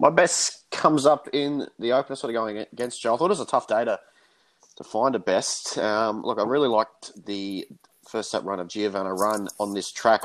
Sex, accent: male, Australian